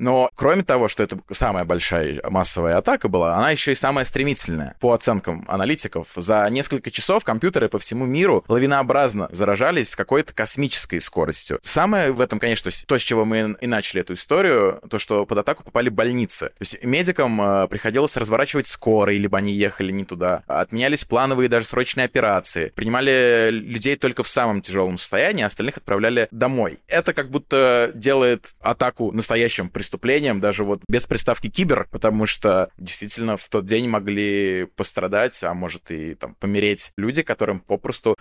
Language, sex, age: Russian, male, 20-39